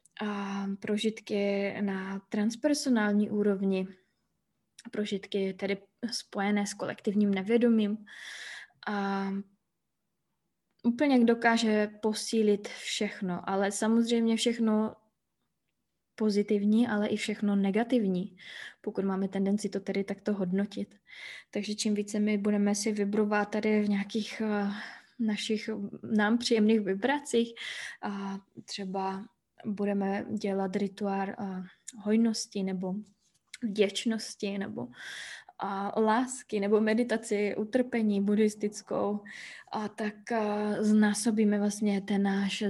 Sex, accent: female, native